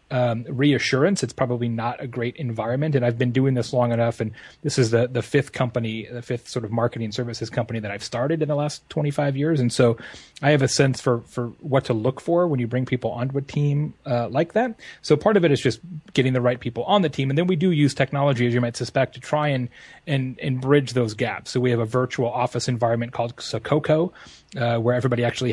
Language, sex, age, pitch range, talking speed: English, male, 30-49, 115-140 Hz, 240 wpm